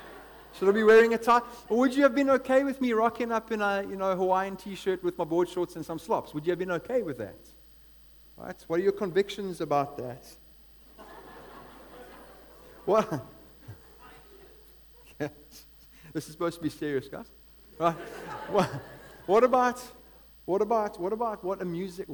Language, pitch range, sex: English, 140-210 Hz, male